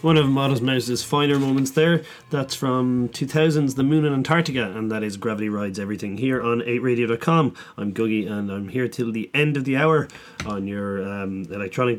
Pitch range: 105-135 Hz